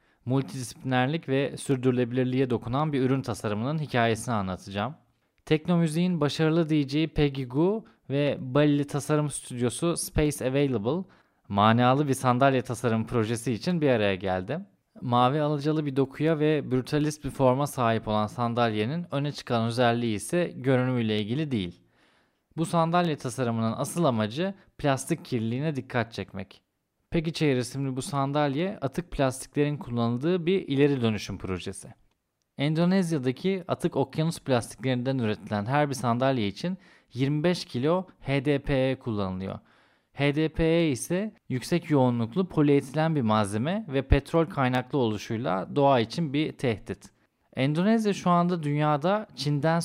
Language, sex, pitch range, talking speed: Turkish, male, 120-155 Hz, 120 wpm